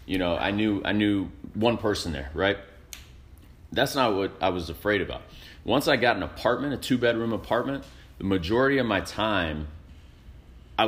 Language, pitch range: English, 85-115 Hz